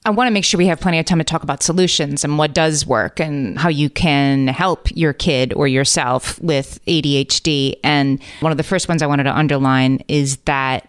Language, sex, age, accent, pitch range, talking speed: English, female, 30-49, American, 145-175 Hz, 225 wpm